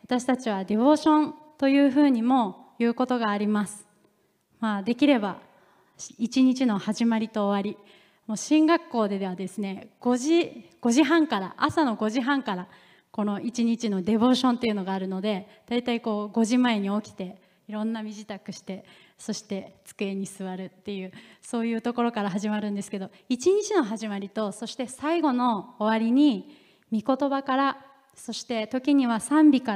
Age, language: 20-39, Japanese